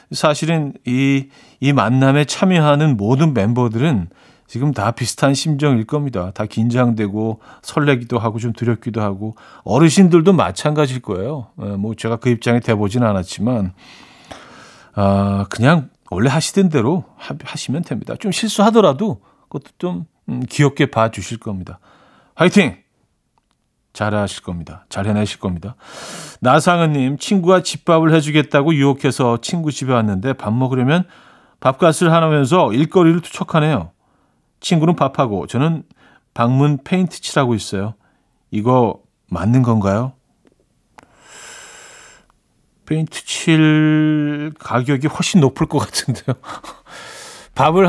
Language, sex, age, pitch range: Korean, male, 40-59, 115-160 Hz